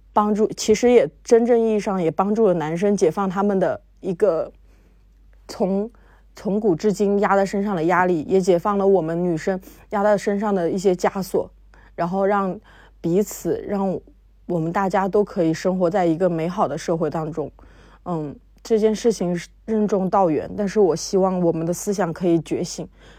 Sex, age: female, 20-39